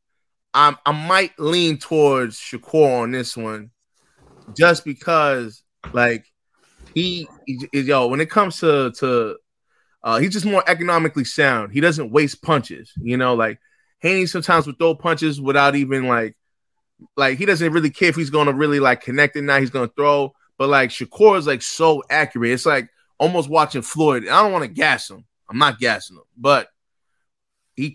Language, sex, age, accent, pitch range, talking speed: English, male, 20-39, American, 125-165 Hz, 175 wpm